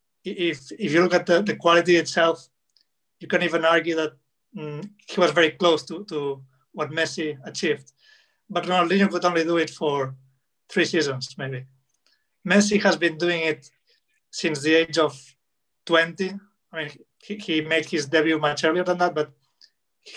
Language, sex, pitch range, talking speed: English, male, 150-185 Hz, 170 wpm